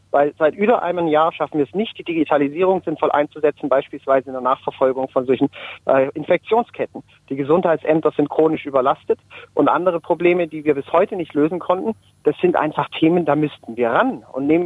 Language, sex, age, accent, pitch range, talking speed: German, male, 40-59, German, 140-175 Hz, 190 wpm